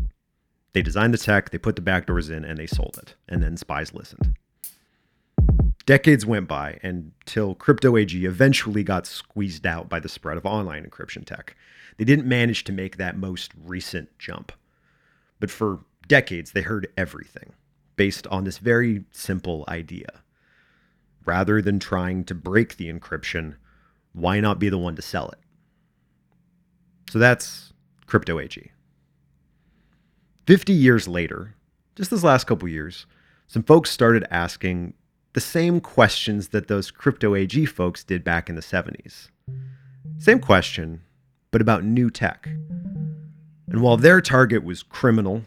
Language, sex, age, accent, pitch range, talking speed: English, male, 40-59, American, 90-130 Hz, 150 wpm